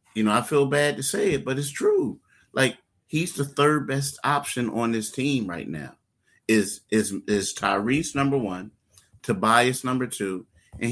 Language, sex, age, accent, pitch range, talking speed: English, male, 30-49, American, 110-135 Hz, 175 wpm